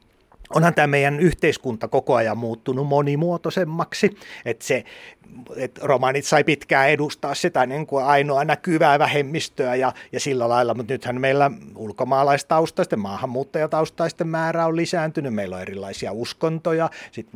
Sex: male